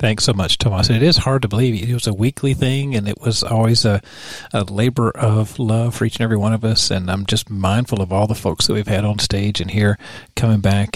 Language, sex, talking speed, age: English, male, 265 wpm, 40-59